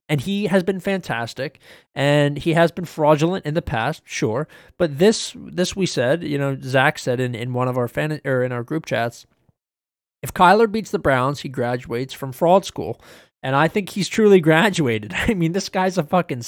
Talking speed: 205 wpm